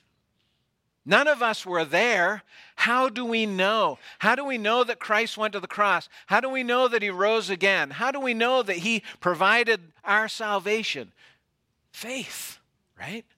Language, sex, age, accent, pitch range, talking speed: English, male, 50-69, American, 145-205 Hz, 170 wpm